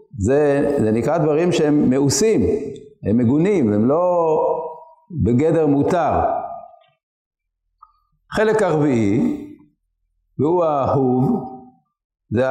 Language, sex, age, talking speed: Hebrew, male, 60-79, 80 wpm